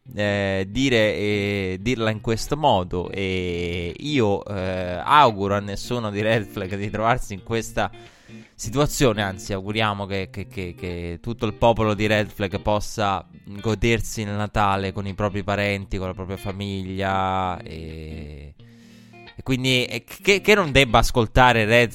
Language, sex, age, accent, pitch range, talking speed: Italian, male, 20-39, native, 95-120 Hz, 140 wpm